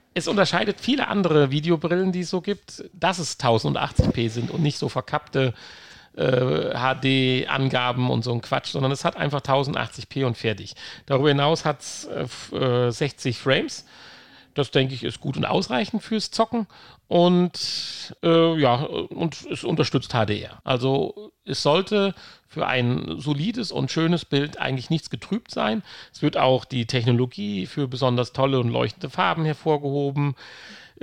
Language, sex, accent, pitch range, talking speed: German, male, German, 130-170 Hz, 145 wpm